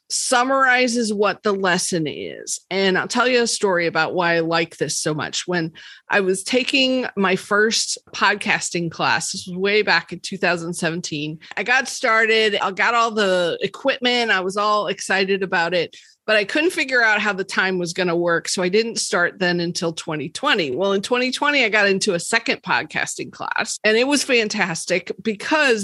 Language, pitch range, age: English, 185-245 Hz, 40-59